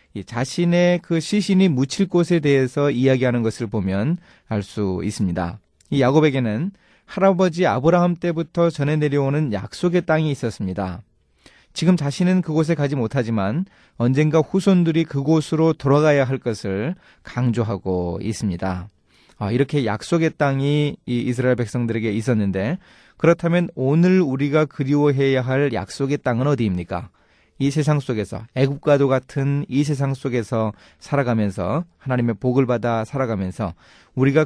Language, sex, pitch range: Korean, male, 110-160 Hz